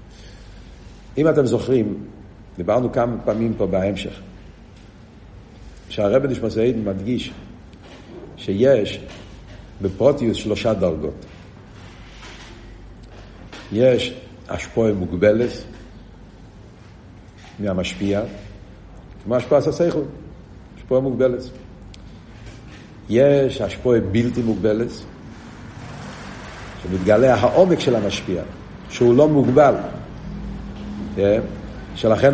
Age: 60-79